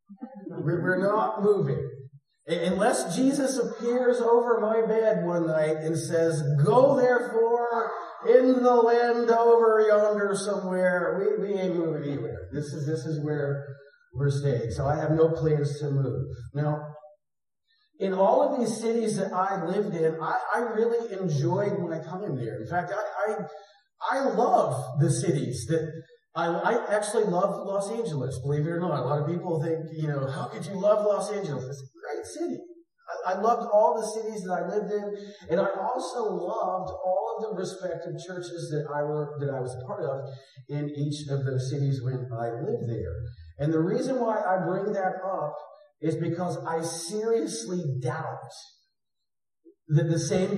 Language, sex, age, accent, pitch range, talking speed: English, male, 40-59, American, 145-205 Hz, 170 wpm